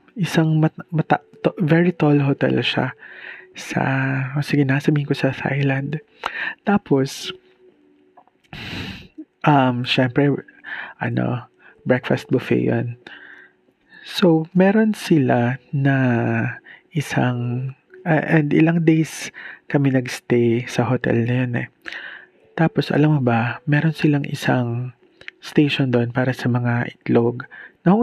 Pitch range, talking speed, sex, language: 125-165 Hz, 110 wpm, male, Filipino